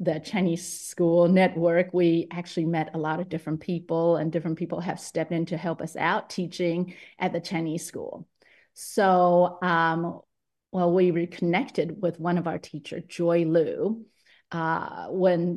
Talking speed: 155 wpm